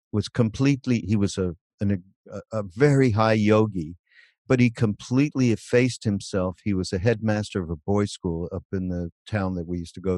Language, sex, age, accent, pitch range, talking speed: English, male, 50-69, American, 95-115 Hz, 195 wpm